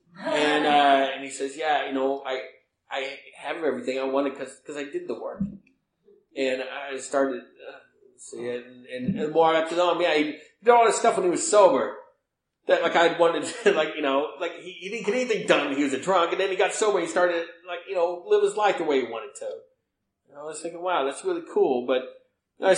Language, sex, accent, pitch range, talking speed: English, male, American, 140-220 Hz, 250 wpm